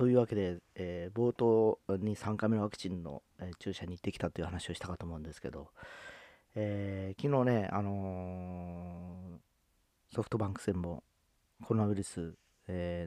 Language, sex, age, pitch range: Japanese, male, 40-59, 90-115 Hz